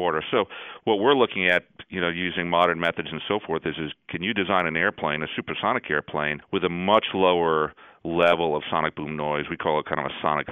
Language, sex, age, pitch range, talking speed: English, male, 40-59, 75-90 Hz, 230 wpm